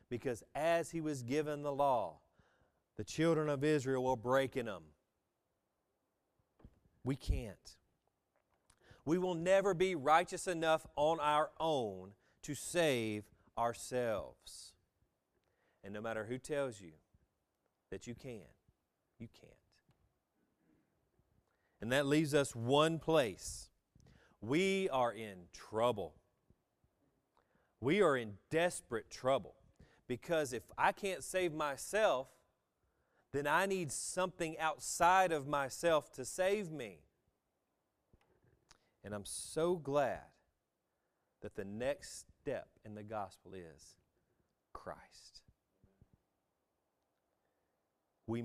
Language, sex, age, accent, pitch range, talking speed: English, male, 40-59, American, 110-155 Hz, 105 wpm